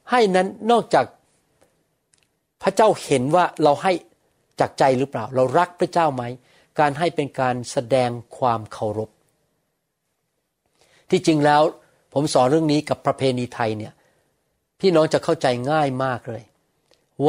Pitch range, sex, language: 125-160 Hz, male, Thai